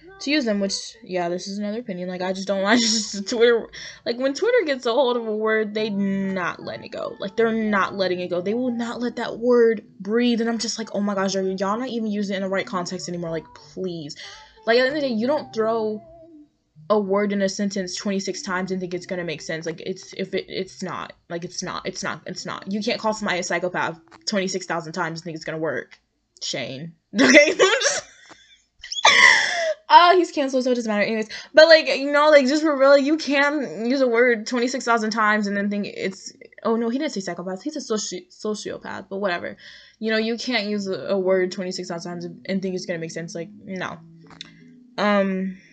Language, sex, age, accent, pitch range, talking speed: English, female, 20-39, American, 185-235 Hz, 225 wpm